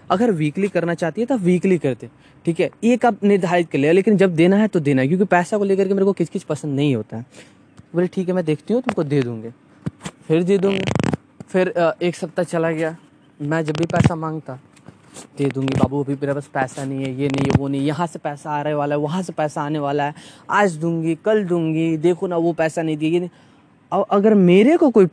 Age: 20-39